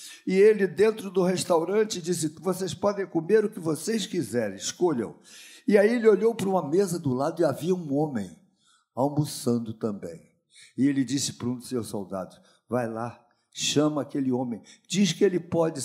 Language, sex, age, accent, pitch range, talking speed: Portuguese, male, 60-79, Brazilian, 135-190 Hz, 175 wpm